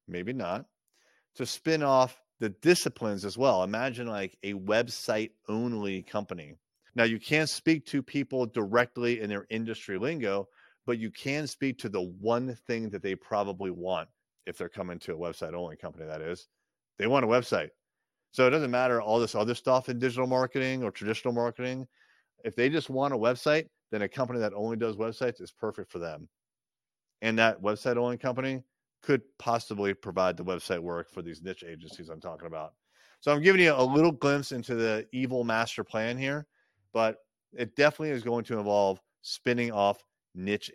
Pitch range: 100-130 Hz